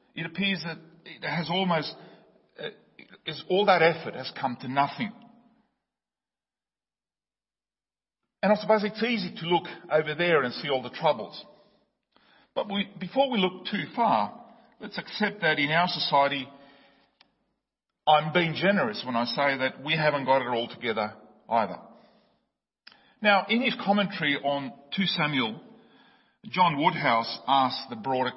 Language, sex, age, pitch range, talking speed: English, male, 50-69, 140-195 Hz, 140 wpm